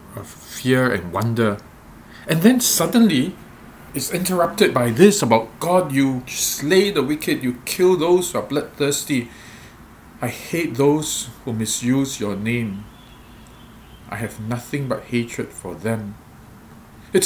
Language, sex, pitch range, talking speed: English, male, 115-140 Hz, 125 wpm